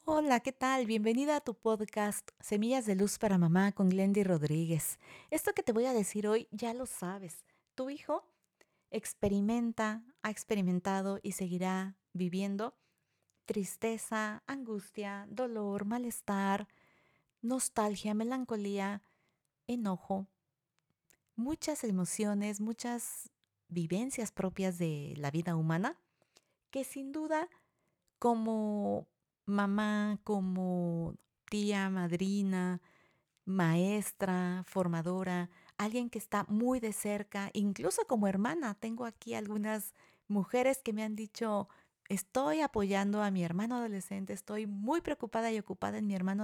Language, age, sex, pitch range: Spanish, 40-59, female, 190-230 Hz